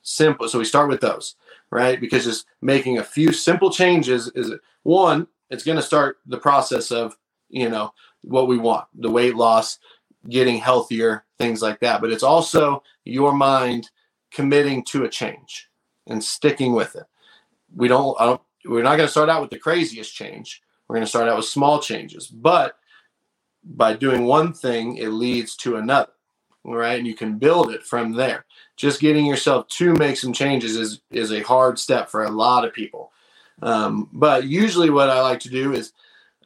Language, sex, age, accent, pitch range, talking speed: English, male, 30-49, American, 115-145 Hz, 185 wpm